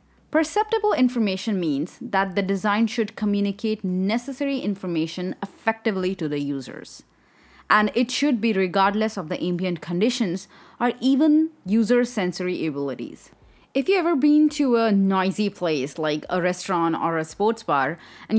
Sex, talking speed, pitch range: female, 145 wpm, 170-235 Hz